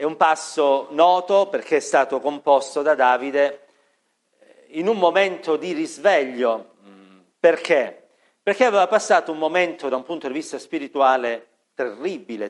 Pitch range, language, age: 130-180 Hz, Italian, 40-59